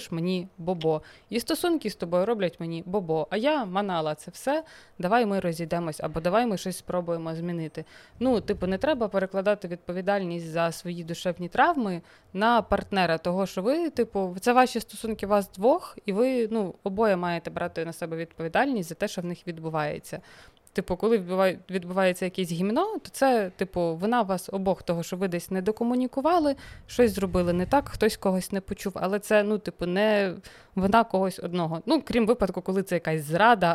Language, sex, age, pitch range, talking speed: Ukrainian, female, 20-39, 170-210 Hz, 175 wpm